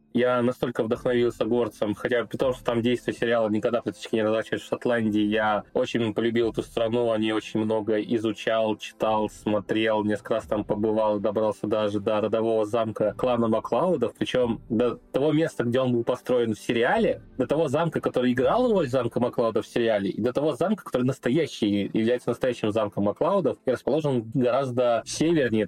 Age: 20-39